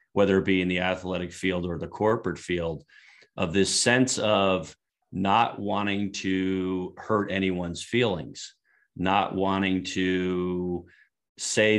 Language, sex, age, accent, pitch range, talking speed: English, male, 40-59, American, 90-100 Hz, 125 wpm